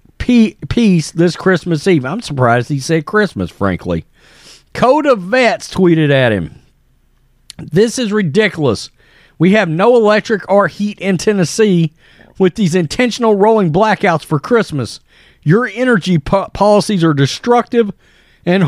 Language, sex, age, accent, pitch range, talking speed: English, male, 40-59, American, 150-215 Hz, 130 wpm